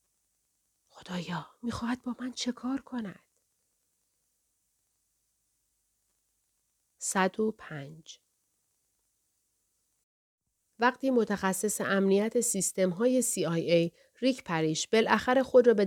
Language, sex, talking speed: Persian, female, 70 wpm